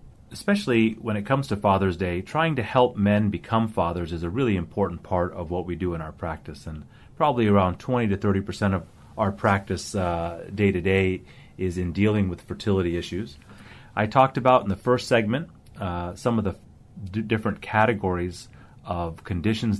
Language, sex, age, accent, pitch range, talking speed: English, male, 30-49, American, 90-115 Hz, 180 wpm